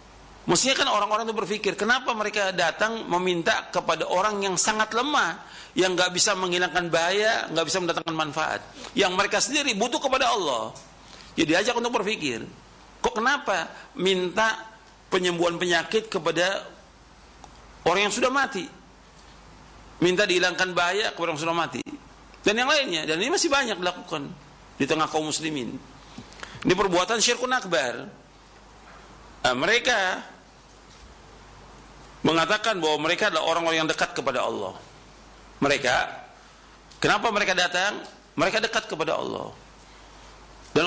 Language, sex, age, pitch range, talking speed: Indonesian, male, 50-69, 155-210 Hz, 130 wpm